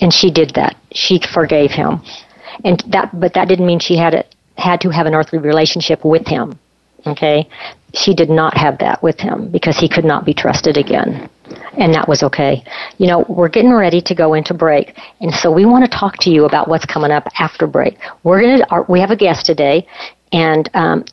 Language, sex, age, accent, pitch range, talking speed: English, female, 50-69, American, 165-200 Hz, 220 wpm